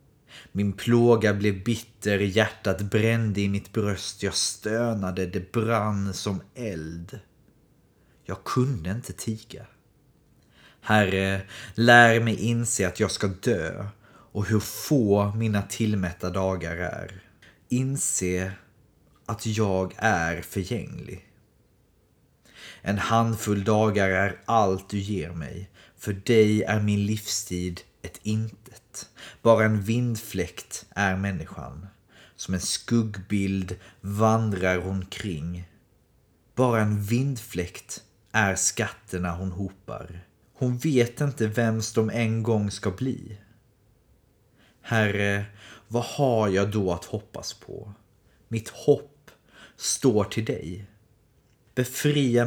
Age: 30-49